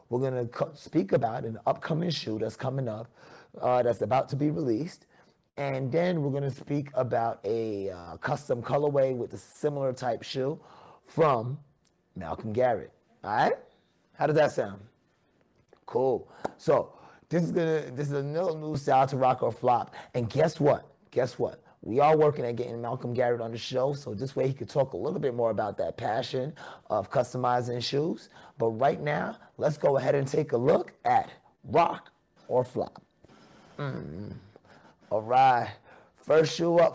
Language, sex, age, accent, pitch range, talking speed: English, male, 30-49, American, 125-155 Hz, 180 wpm